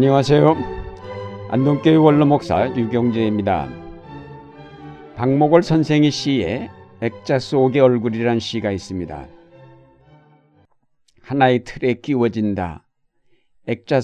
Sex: male